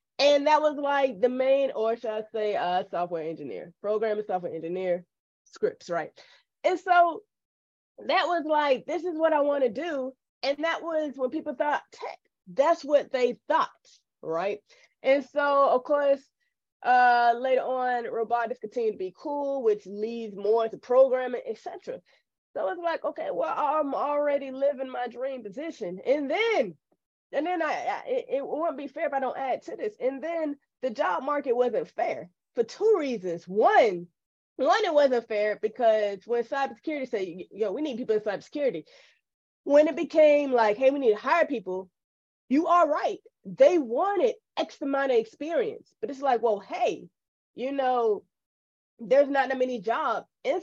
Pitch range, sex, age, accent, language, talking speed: 235-330 Hz, female, 20-39, American, English, 175 wpm